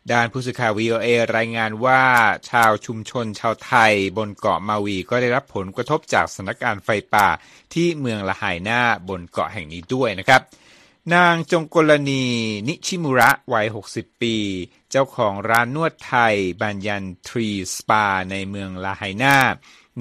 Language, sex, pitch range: Thai, male, 100-130 Hz